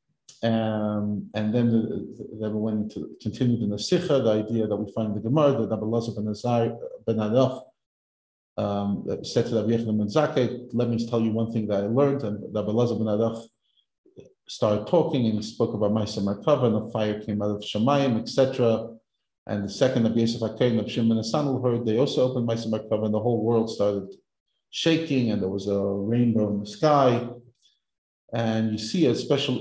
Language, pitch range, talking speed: English, 105-130 Hz, 185 wpm